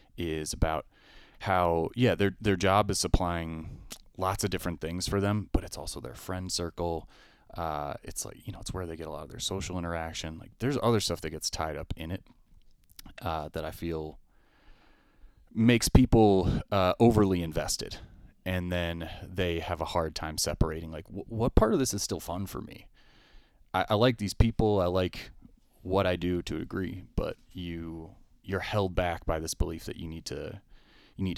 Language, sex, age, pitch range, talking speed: English, male, 30-49, 80-100 Hz, 190 wpm